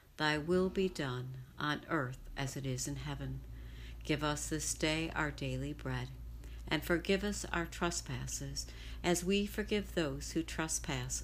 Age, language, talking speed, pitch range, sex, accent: 60-79, English, 155 wpm, 125-170 Hz, female, American